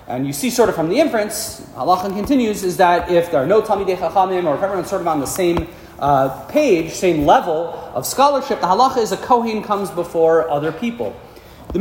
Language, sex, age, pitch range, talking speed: English, male, 40-59, 150-220 Hz, 210 wpm